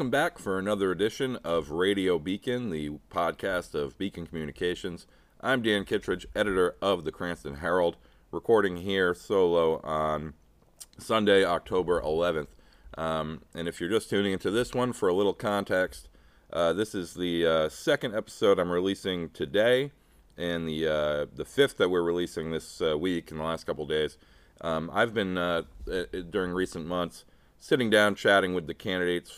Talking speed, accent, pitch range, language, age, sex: 165 wpm, American, 80-95 Hz, English, 40-59, male